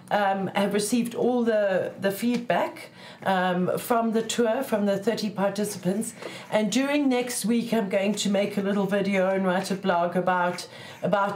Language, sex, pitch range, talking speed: English, female, 180-220 Hz, 175 wpm